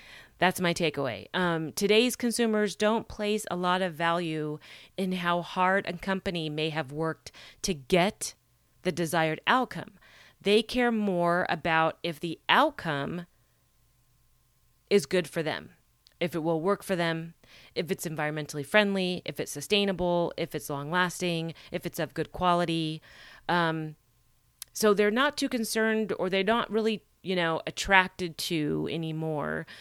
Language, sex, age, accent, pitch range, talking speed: English, female, 30-49, American, 155-200 Hz, 145 wpm